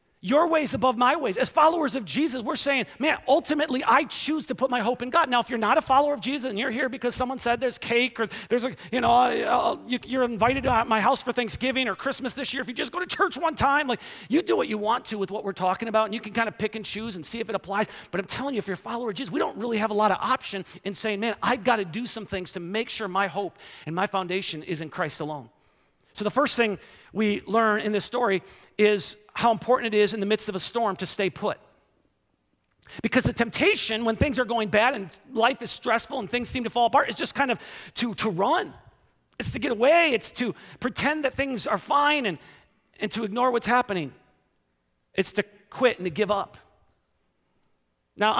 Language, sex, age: English, male, 40-59